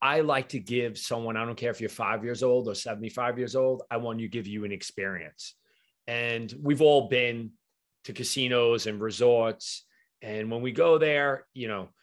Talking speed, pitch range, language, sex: 195 wpm, 110-130 Hz, English, male